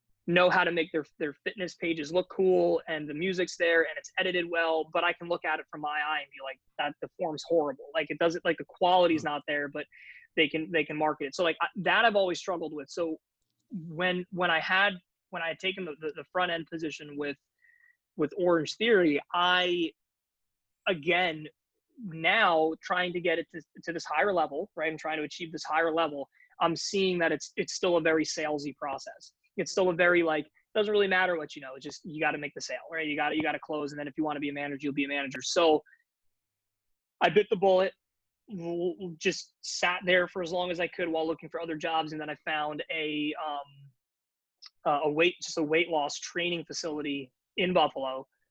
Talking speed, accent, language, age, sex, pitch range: 220 wpm, American, English, 20-39, male, 150-180 Hz